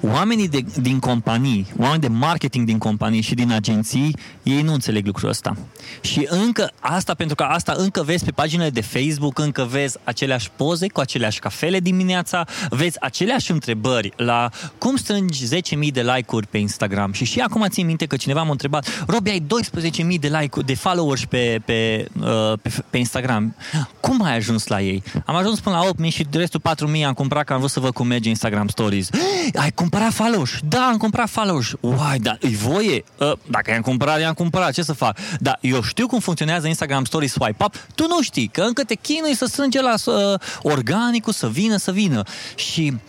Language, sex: Romanian, male